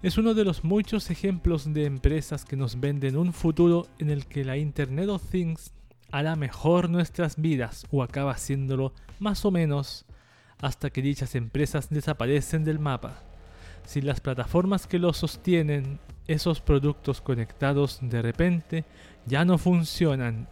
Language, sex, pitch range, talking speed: Spanish, male, 125-165 Hz, 150 wpm